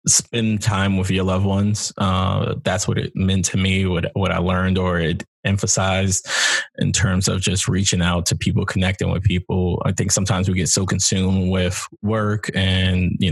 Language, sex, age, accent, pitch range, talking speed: English, male, 20-39, American, 95-110 Hz, 195 wpm